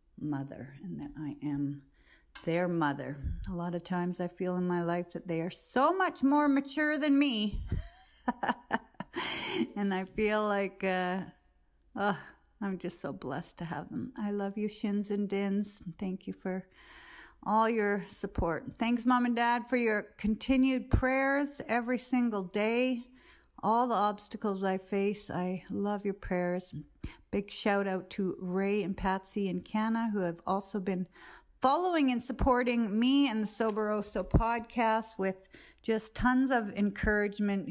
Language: English